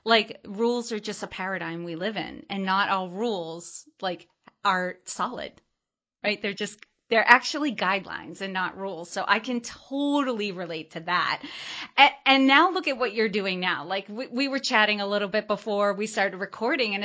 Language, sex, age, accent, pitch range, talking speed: English, female, 30-49, American, 195-250 Hz, 190 wpm